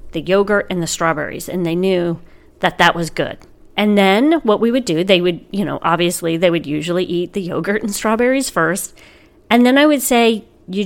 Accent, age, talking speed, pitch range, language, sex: American, 40-59, 210 wpm, 175-230 Hz, English, female